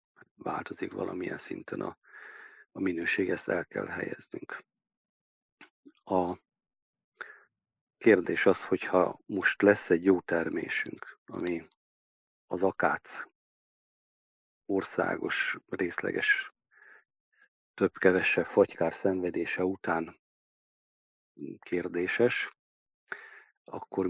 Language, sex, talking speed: Hungarian, male, 75 wpm